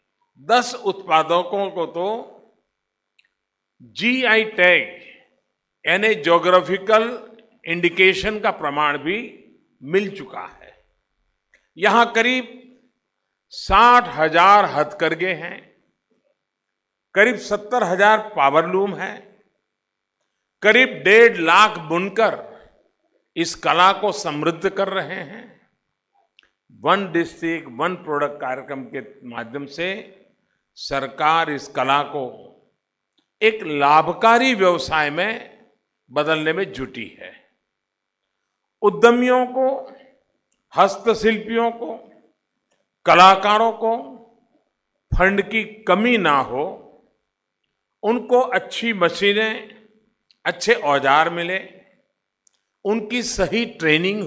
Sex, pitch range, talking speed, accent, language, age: male, 170-225 Hz, 85 wpm, native, Hindi, 50-69